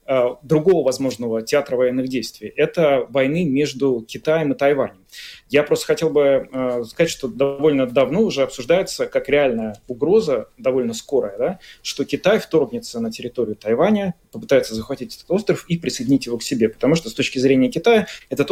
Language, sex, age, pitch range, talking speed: Russian, male, 30-49, 130-165 Hz, 155 wpm